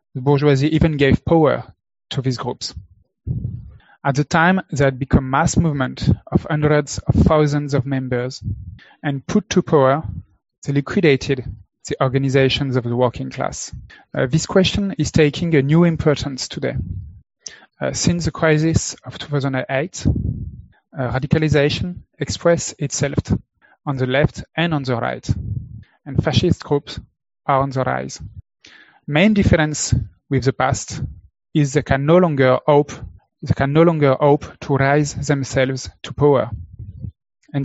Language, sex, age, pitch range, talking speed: English, male, 30-49, 130-150 Hz, 140 wpm